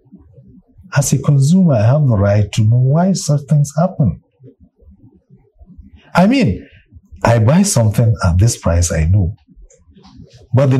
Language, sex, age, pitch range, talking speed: English, male, 50-69, 110-140 Hz, 140 wpm